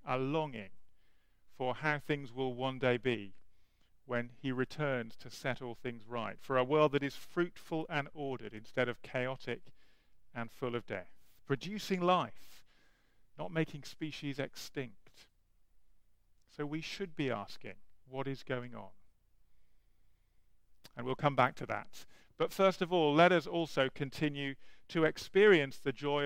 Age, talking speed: 40-59, 150 wpm